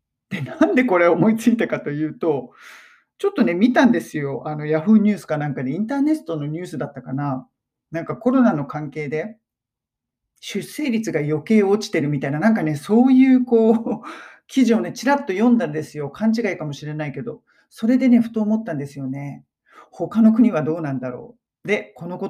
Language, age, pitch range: Japanese, 40-59, 155-230 Hz